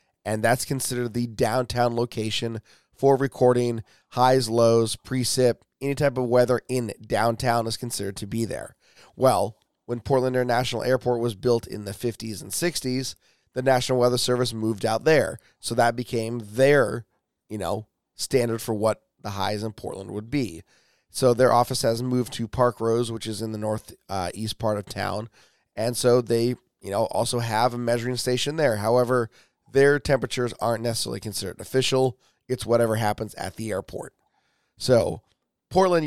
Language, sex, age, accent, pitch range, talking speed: English, male, 30-49, American, 110-130 Hz, 165 wpm